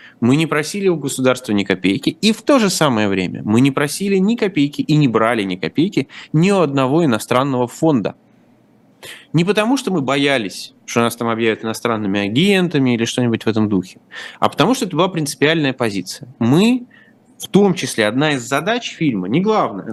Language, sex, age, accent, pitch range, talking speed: Russian, male, 30-49, native, 115-170 Hz, 185 wpm